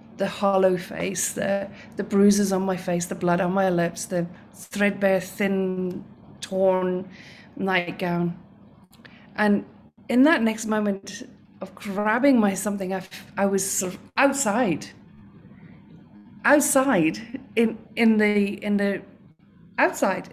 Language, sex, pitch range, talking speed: English, female, 190-225 Hz, 125 wpm